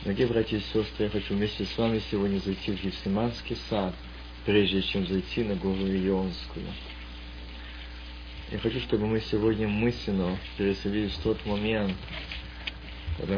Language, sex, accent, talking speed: Russian, male, native, 140 wpm